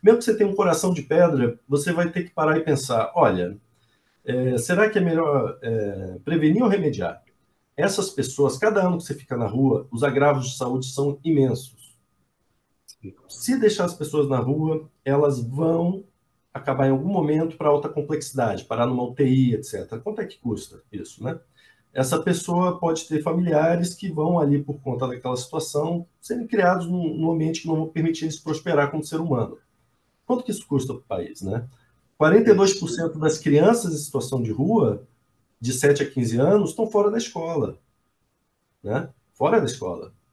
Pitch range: 130-175 Hz